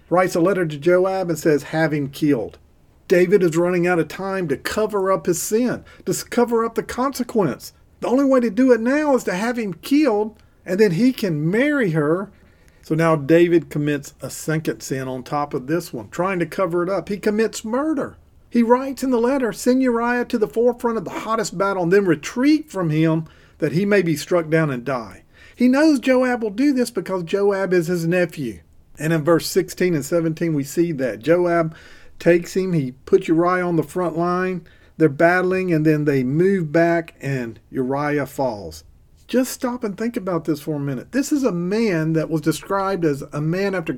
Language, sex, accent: English, male, American